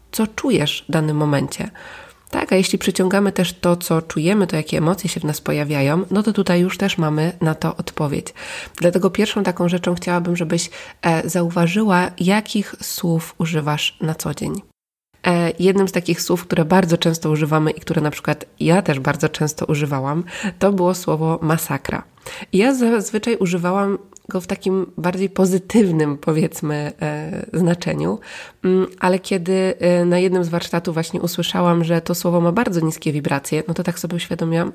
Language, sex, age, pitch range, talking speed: Polish, female, 20-39, 155-185 Hz, 160 wpm